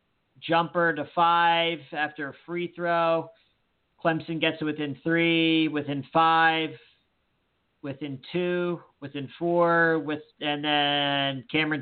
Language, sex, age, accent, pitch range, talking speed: English, male, 40-59, American, 135-150 Hz, 110 wpm